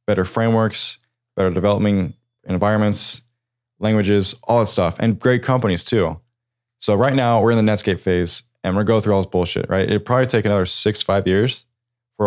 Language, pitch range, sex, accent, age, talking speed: English, 95-120 Hz, male, American, 20-39, 190 wpm